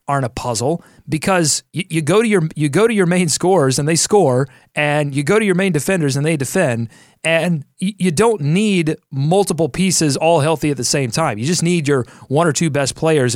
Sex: male